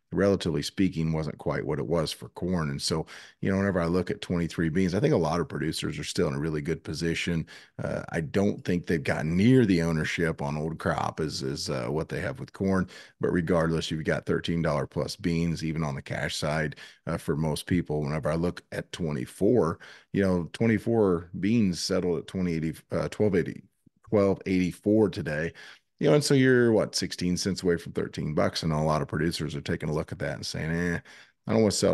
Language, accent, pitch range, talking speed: English, American, 80-95 Hz, 215 wpm